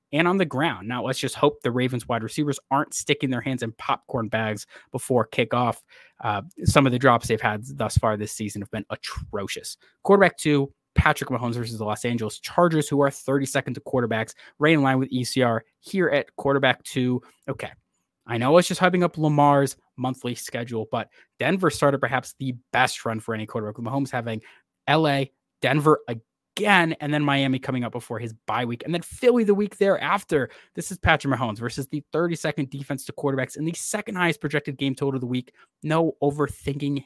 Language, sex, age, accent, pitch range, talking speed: English, male, 20-39, American, 120-150 Hz, 200 wpm